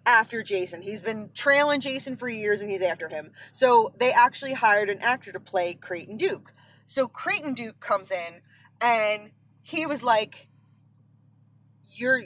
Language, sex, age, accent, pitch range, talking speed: English, female, 20-39, American, 205-285 Hz, 155 wpm